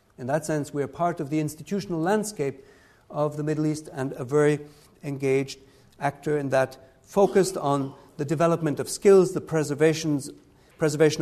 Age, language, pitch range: 50-69, English, 125-155 Hz